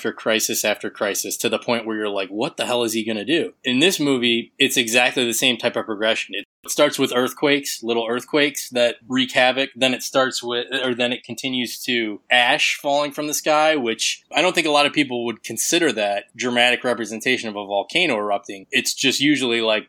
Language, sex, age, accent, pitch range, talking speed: English, male, 20-39, American, 110-135 Hz, 215 wpm